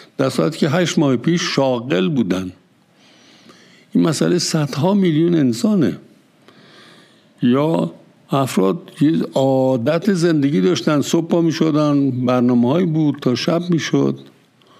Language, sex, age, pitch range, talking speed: Persian, male, 60-79, 115-170 Hz, 105 wpm